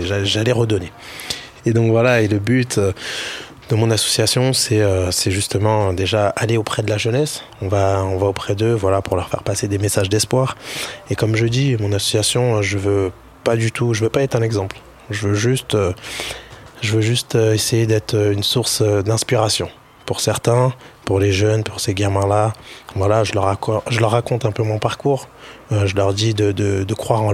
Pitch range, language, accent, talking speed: 100-115 Hz, French, French, 200 wpm